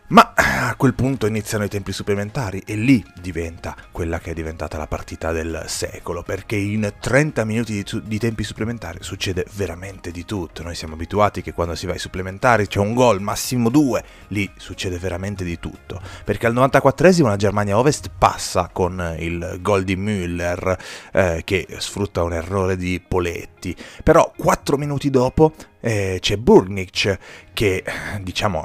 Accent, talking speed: native, 160 wpm